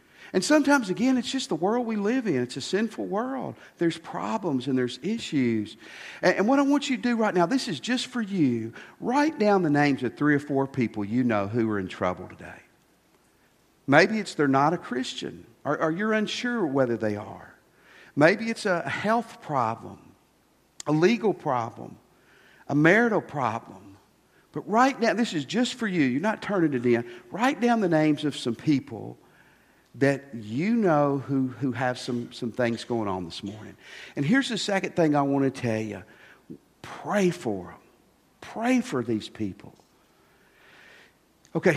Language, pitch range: English, 120-205 Hz